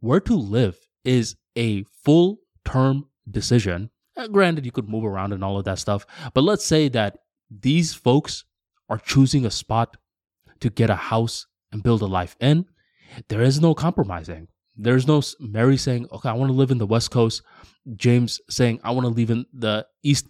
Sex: male